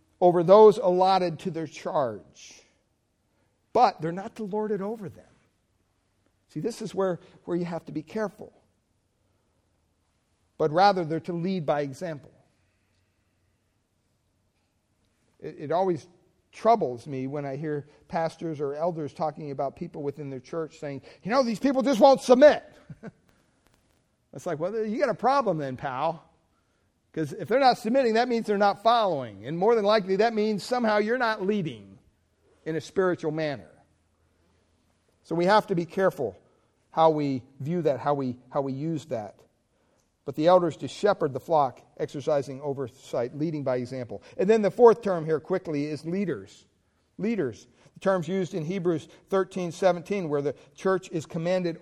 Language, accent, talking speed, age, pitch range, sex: English, American, 160 wpm, 50-69, 125-190 Hz, male